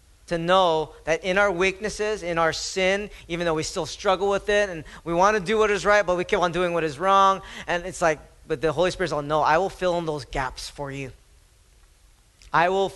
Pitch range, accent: 155-205 Hz, American